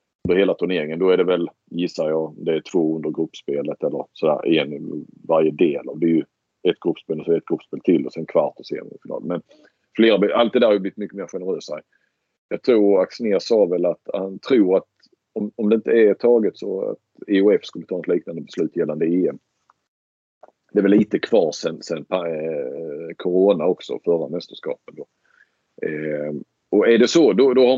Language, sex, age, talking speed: Swedish, male, 40-59, 200 wpm